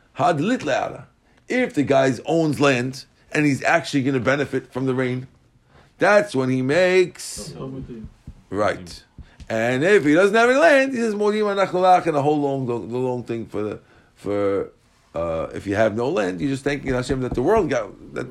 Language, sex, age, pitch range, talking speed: English, male, 50-69, 125-155 Hz, 175 wpm